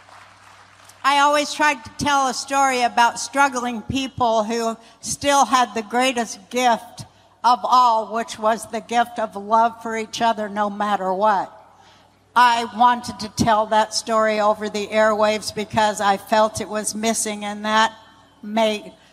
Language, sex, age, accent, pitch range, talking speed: English, female, 60-79, American, 215-240 Hz, 145 wpm